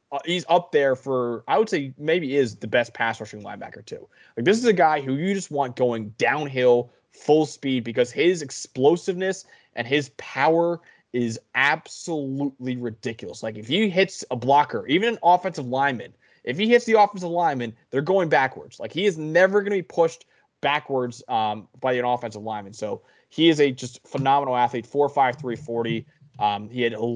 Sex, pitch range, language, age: male, 125-165 Hz, English, 20-39